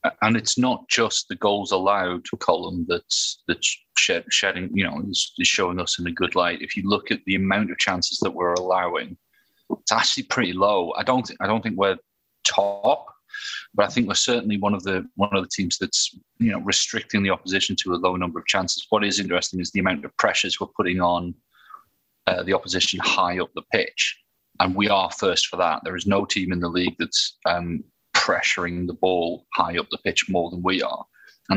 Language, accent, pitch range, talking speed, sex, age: English, British, 90-100 Hz, 215 wpm, male, 30-49